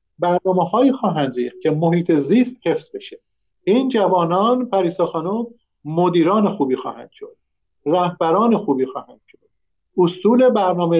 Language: Persian